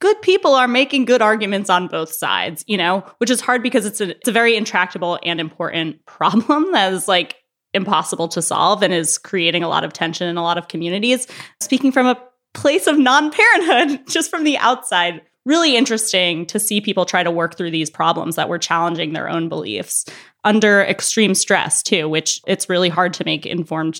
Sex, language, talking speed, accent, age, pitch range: female, English, 200 wpm, American, 20-39, 170-235 Hz